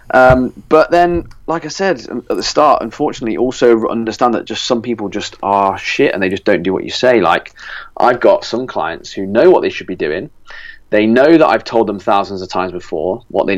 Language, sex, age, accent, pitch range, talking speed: English, male, 30-49, British, 100-125 Hz, 225 wpm